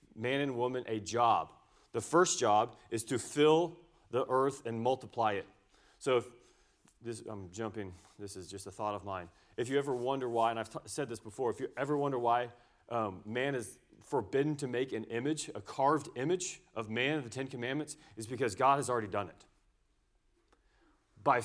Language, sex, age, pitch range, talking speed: English, male, 30-49, 105-140 Hz, 195 wpm